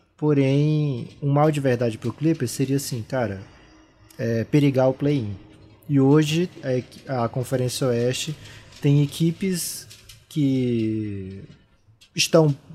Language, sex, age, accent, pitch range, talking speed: Portuguese, male, 20-39, Brazilian, 120-150 Hz, 105 wpm